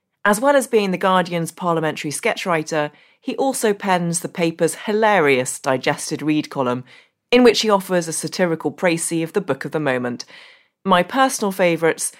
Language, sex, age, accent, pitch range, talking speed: English, female, 30-49, British, 155-205 Hz, 165 wpm